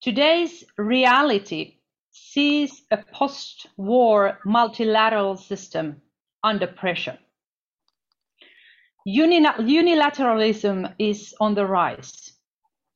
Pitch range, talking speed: 210-290 Hz, 65 wpm